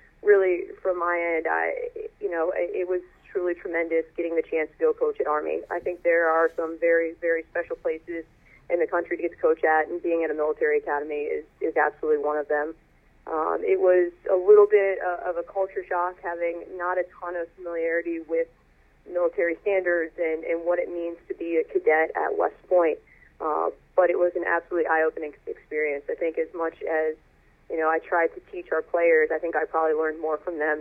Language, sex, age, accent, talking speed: English, female, 30-49, American, 215 wpm